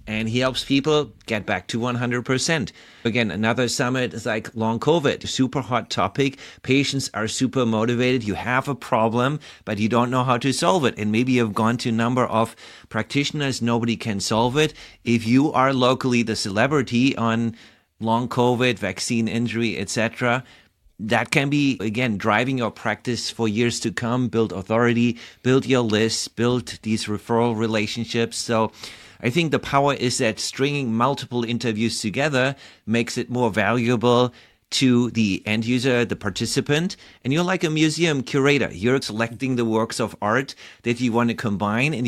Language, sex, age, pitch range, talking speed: English, male, 30-49, 110-130 Hz, 170 wpm